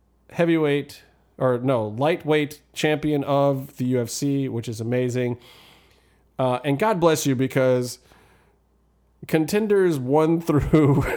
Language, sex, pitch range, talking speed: English, male, 125-155 Hz, 105 wpm